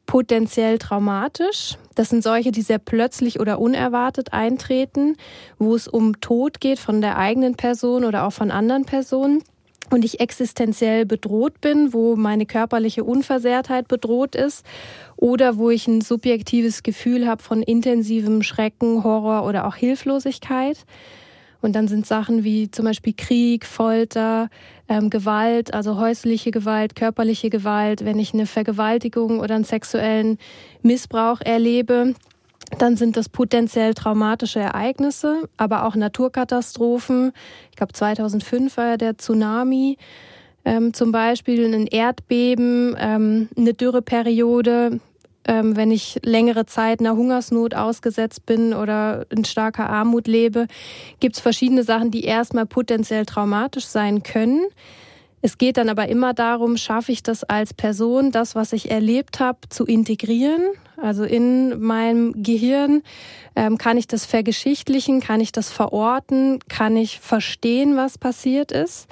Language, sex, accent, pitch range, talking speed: German, female, German, 220-250 Hz, 135 wpm